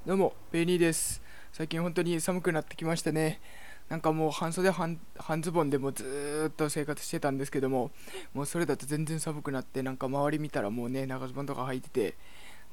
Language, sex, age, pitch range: Japanese, male, 20-39, 130-165 Hz